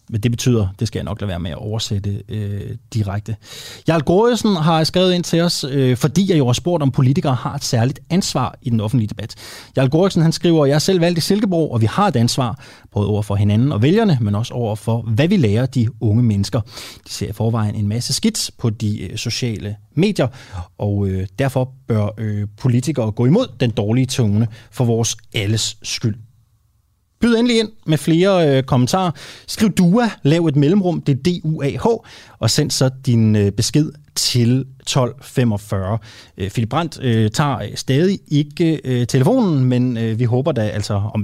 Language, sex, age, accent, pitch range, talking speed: Danish, male, 30-49, native, 105-150 Hz, 195 wpm